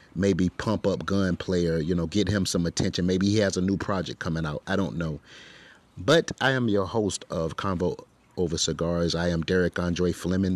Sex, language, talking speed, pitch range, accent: male, English, 205 wpm, 85-100 Hz, American